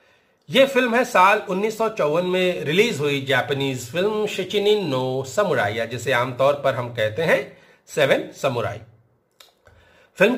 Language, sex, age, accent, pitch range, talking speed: Hindi, male, 40-59, native, 135-210 Hz, 115 wpm